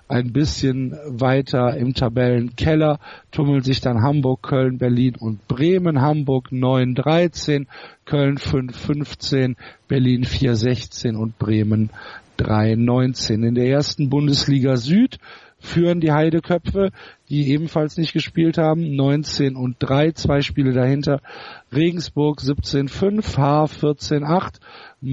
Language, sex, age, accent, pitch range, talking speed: German, male, 50-69, German, 130-155 Hz, 105 wpm